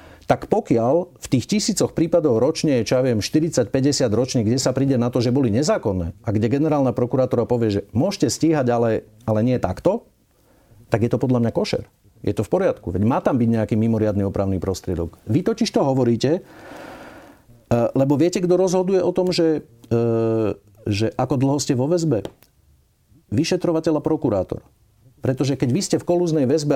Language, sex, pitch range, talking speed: Slovak, male, 110-160 Hz, 175 wpm